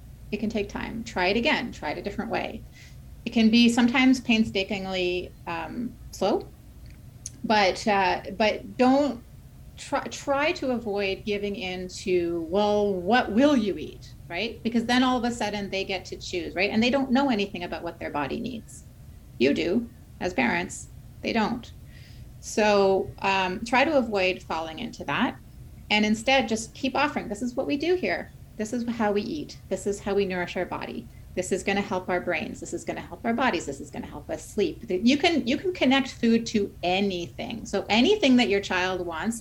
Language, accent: English, American